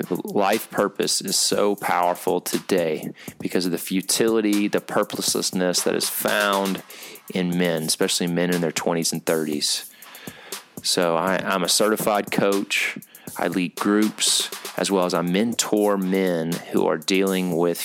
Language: English